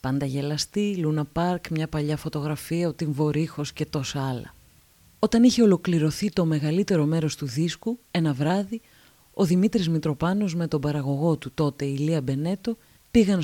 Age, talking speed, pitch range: 30-49, 150 wpm, 150-190 Hz